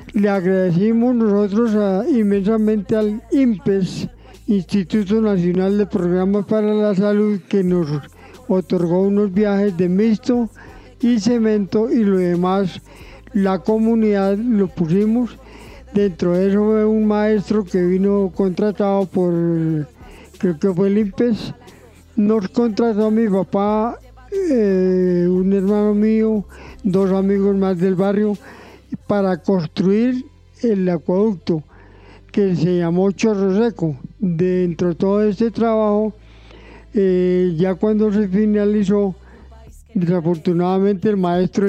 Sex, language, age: male, Spanish, 50-69